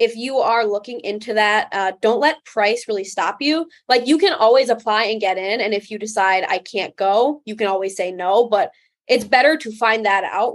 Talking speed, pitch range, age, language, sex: 230 wpm, 200-260 Hz, 20-39, English, female